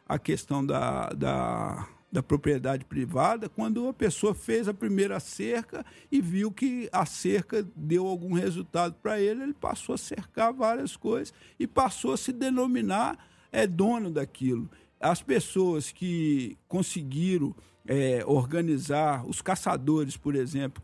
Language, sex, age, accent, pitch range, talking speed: Portuguese, male, 50-69, Brazilian, 150-230 Hz, 140 wpm